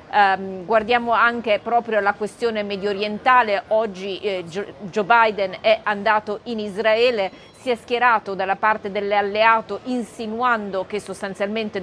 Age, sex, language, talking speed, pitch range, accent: 30-49, female, Italian, 115 wpm, 200-230 Hz, native